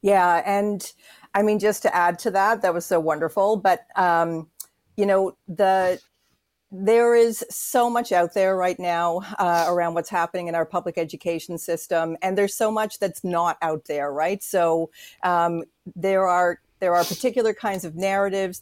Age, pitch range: 50-69, 170-200 Hz